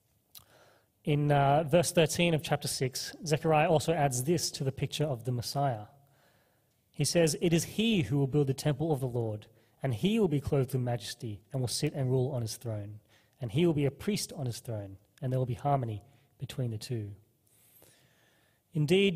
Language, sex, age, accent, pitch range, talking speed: English, male, 30-49, Australian, 125-160 Hz, 195 wpm